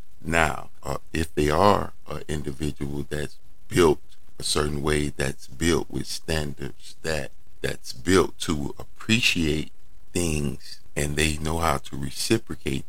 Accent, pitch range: American, 70-85 Hz